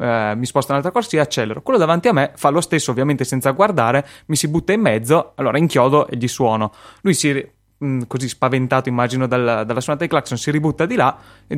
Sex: male